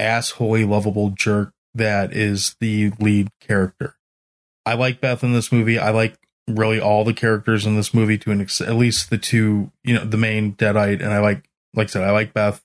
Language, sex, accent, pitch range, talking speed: English, male, American, 105-115 Hz, 210 wpm